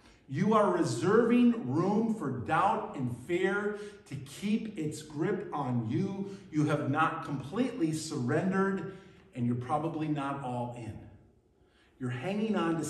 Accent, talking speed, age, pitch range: American, 135 wpm, 50-69, 155-230 Hz